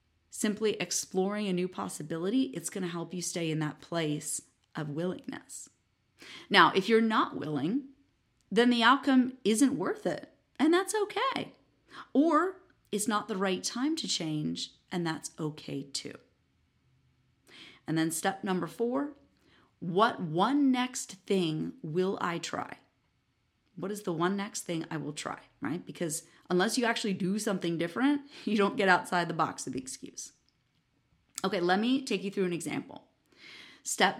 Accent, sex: American, female